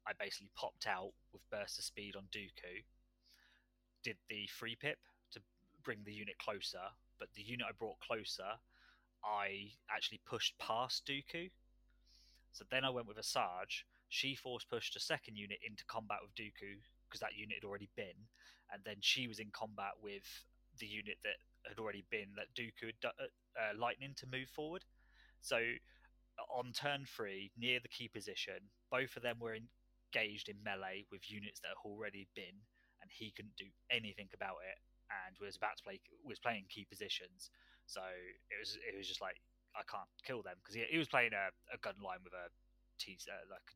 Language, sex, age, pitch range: English, male, 20-39, 100-125 Hz